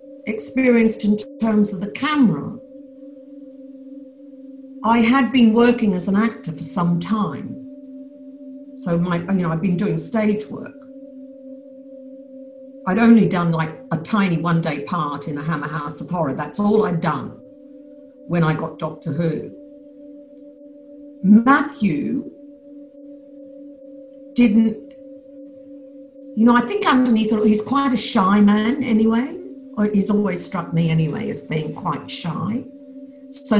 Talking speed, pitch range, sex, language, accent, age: 130 wpm, 190-270 Hz, female, English, British, 50-69